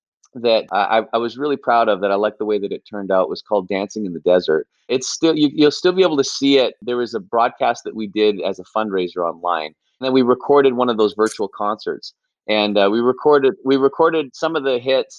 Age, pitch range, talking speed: 30-49, 105-130 Hz, 240 wpm